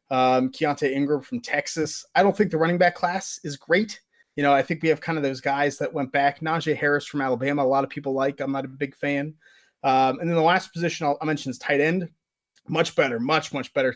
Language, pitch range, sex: English, 130-160 Hz, male